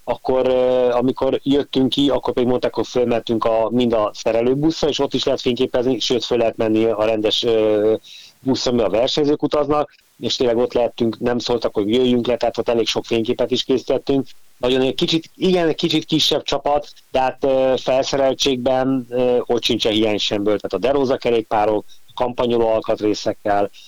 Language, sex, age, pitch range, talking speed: Hungarian, male, 30-49, 110-125 Hz, 175 wpm